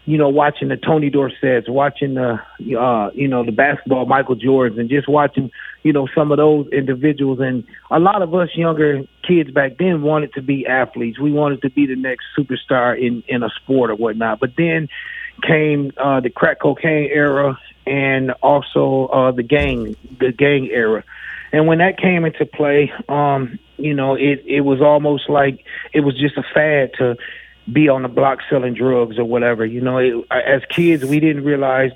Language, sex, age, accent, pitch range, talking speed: English, male, 30-49, American, 130-145 Hz, 190 wpm